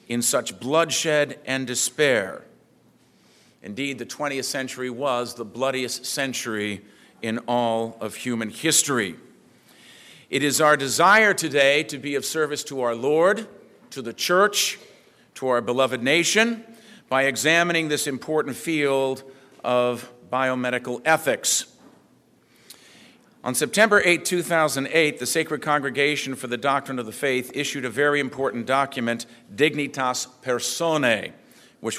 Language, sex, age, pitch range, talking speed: English, male, 50-69, 125-155 Hz, 125 wpm